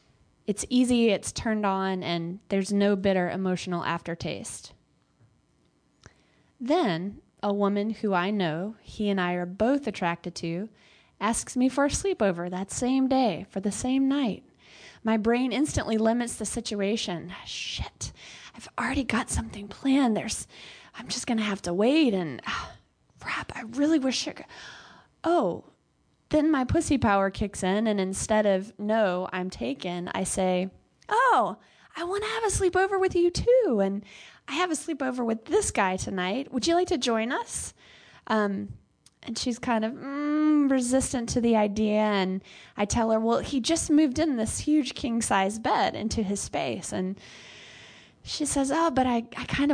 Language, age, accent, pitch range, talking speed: English, 20-39, American, 195-270 Hz, 165 wpm